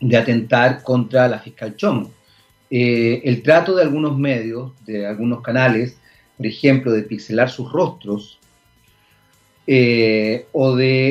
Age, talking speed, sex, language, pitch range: 40-59, 130 wpm, male, Spanish, 120-145 Hz